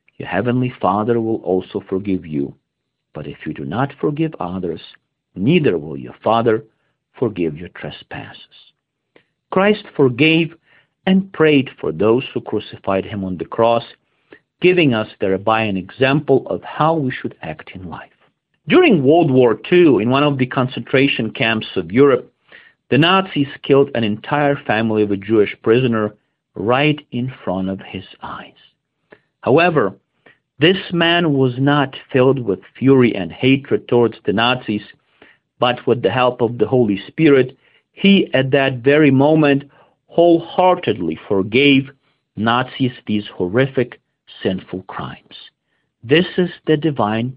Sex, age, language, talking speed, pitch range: male, 50-69, Ukrainian, 140 wpm, 105-145 Hz